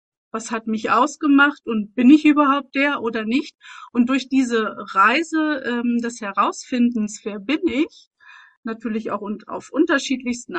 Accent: German